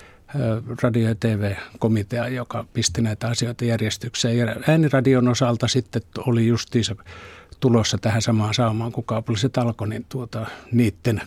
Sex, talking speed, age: male, 120 wpm, 60-79